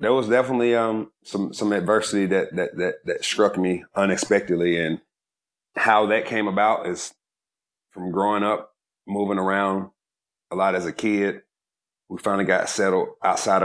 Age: 30-49